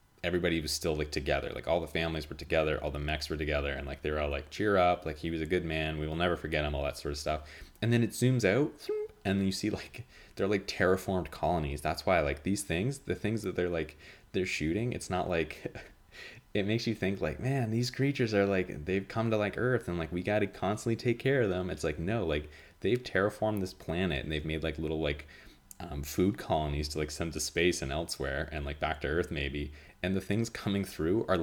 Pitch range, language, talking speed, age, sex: 75-100 Hz, English, 245 wpm, 30-49, male